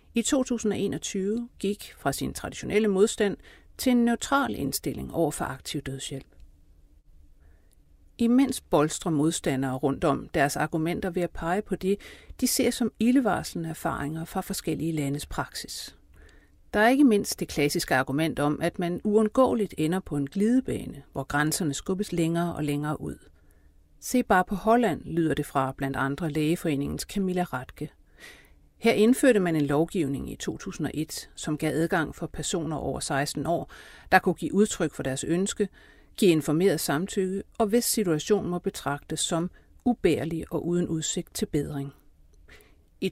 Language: Danish